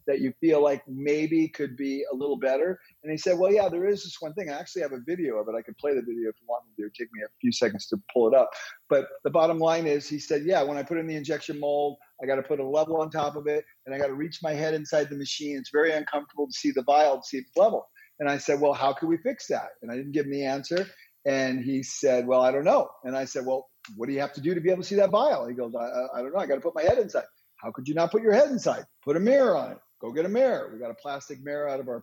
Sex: male